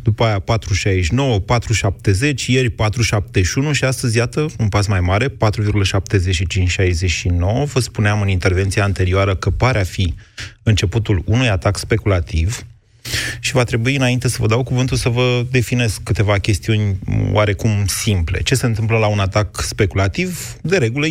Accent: native